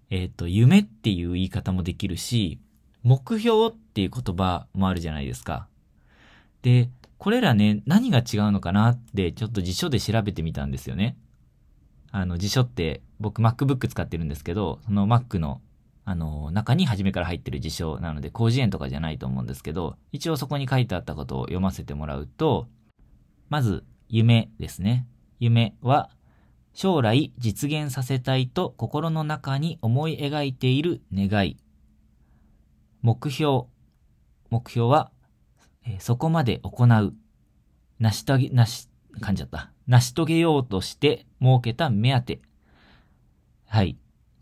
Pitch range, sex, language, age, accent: 90-130 Hz, male, Japanese, 20-39, native